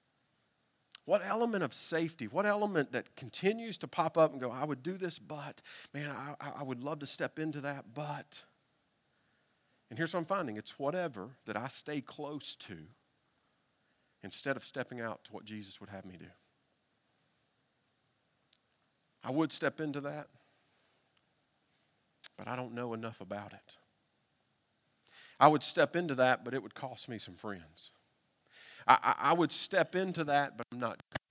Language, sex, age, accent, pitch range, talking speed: English, male, 40-59, American, 110-150 Hz, 165 wpm